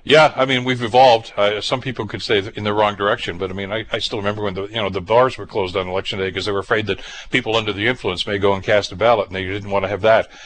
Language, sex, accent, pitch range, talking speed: English, male, American, 100-120 Hz, 310 wpm